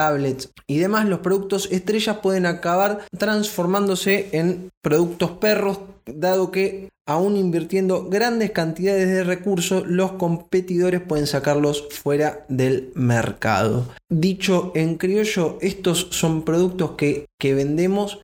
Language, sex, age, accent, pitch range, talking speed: Spanish, male, 20-39, Argentinian, 145-190 Hz, 115 wpm